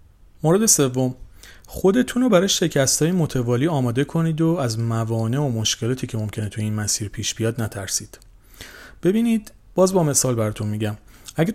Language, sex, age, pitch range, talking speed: Persian, male, 40-59, 105-140 Hz, 155 wpm